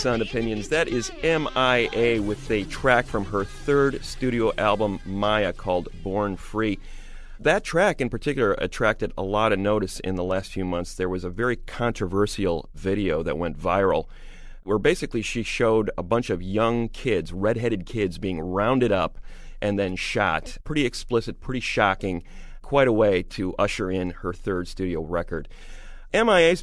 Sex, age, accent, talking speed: male, 30-49, American, 160 wpm